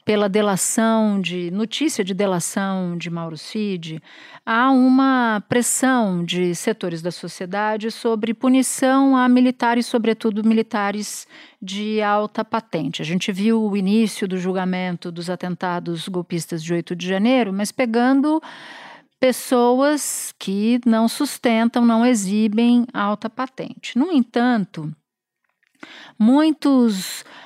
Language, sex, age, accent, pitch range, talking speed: Portuguese, female, 50-69, Brazilian, 195-265 Hz, 115 wpm